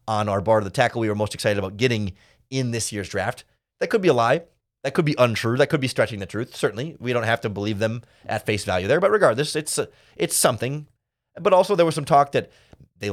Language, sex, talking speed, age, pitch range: English, male, 255 wpm, 30-49, 110-145 Hz